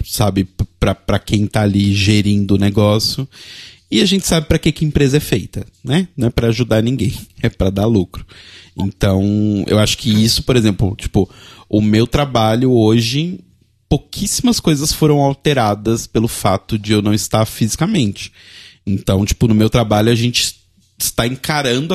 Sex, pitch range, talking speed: male, 100-130 Hz, 165 wpm